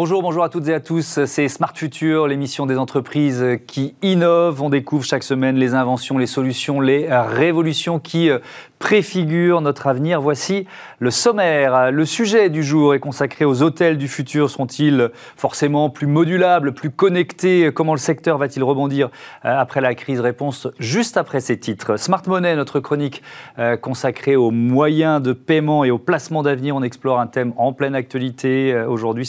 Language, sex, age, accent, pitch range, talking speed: French, male, 40-59, French, 130-165 Hz, 170 wpm